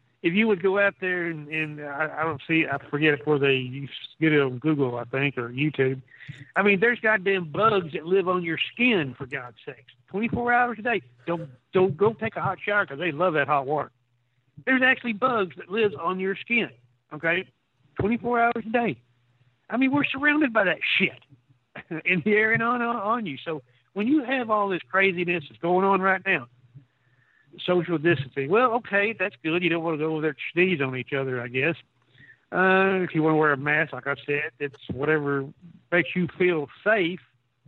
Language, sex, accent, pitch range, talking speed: English, male, American, 140-195 Hz, 210 wpm